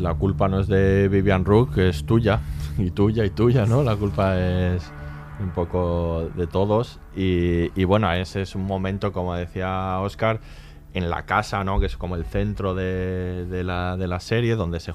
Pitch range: 90-105 Hz